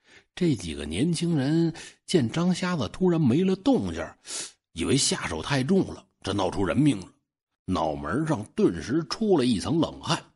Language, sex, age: Chinese, male, 60-79